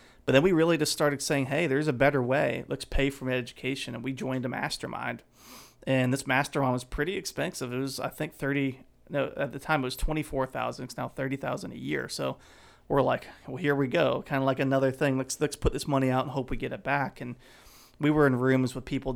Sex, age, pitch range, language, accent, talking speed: male, 30-49, 125-140 Hz, English, American, 240 wpm